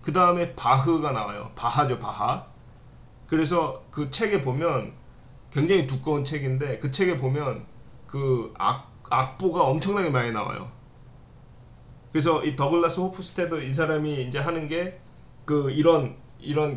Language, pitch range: Korean, 125-155 Hz